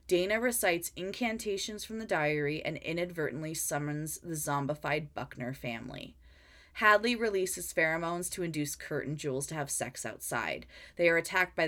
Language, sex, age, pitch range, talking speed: English, female, 20-39, 150-195 Hz, 150 wpm